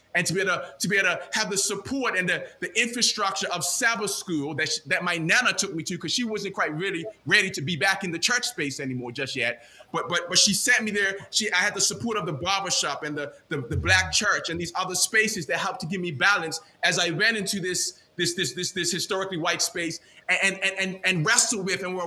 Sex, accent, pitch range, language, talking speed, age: male, American, 170-205 Hz, English, 255 wpm, 20-39